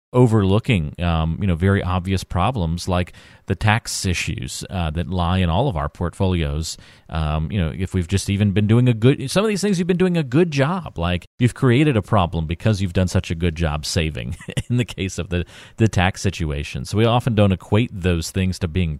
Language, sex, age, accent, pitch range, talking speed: English, male, 40-59, American, 85-110 Hz, 220 wpm